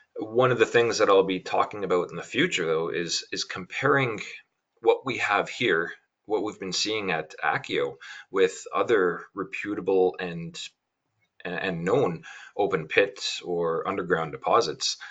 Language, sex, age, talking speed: English, male, 30-49, 145 wpm